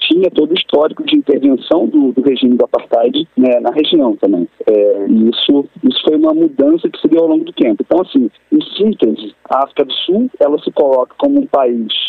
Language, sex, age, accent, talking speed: Portuguese, male, 40-59, Brazilian, 205 wpm